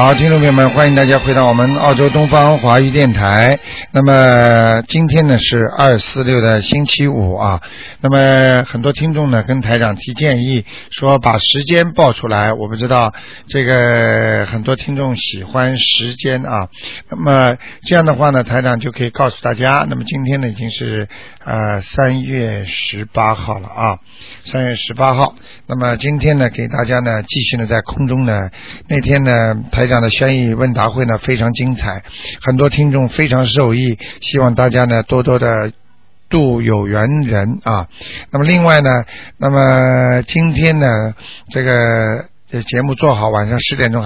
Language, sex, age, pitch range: Chinese, male, 50-69, 110-140 Hz